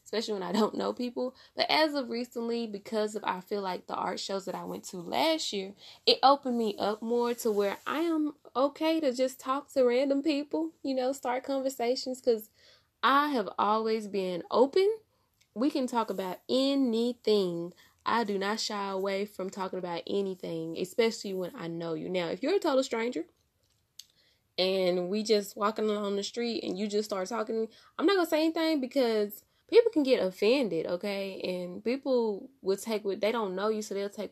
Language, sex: English, female